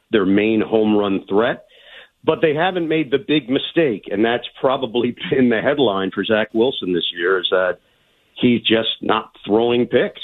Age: 50-69